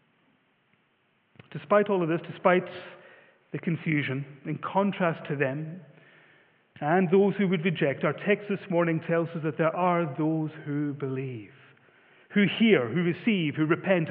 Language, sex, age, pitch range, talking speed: English, male, 40-59, 155-205 Hz, 145 wpm